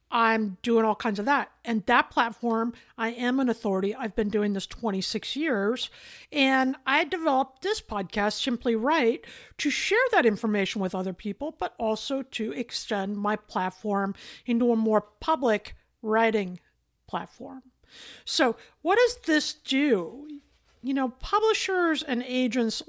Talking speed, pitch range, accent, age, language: 145 wpm, 220-295 Hz, American, 50-69, English